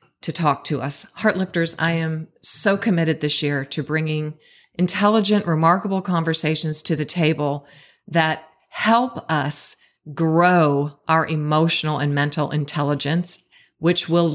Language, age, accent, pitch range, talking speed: English, 40-59, American, 155-195 Hz, 125 wpm